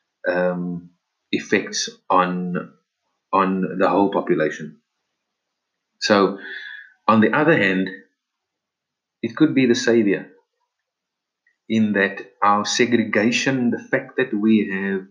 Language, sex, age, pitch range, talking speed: English, male, 30-49, 95-125 Hz, 105 wpm